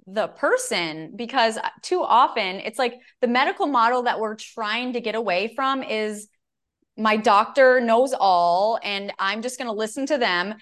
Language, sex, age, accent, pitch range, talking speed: English, female, 20-39, American, 210-270 Hz, 170 wpm